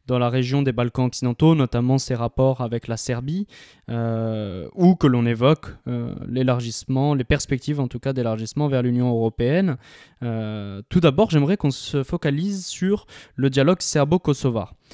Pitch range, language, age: 125-150 Hz, French, 20-39